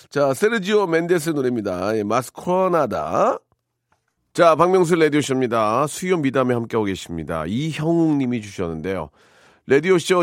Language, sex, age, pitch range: Korean, male, 40-59, 85-125 Hz